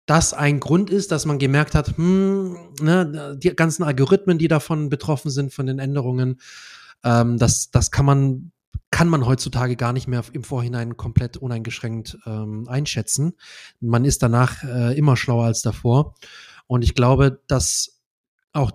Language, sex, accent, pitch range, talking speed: German, male, German, 130-155 Hz, 160 wpm